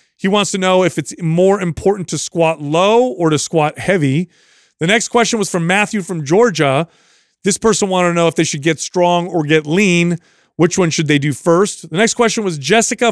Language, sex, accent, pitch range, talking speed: English, male, American, 155-205 Hz, 215 wpm